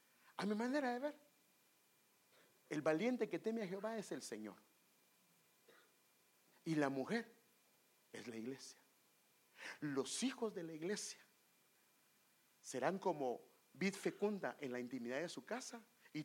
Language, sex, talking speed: English, male, 135 wpm